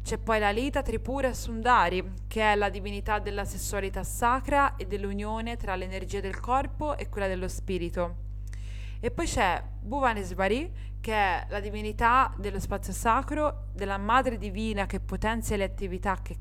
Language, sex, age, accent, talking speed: Italian, female, 20-39, native, 155 wpm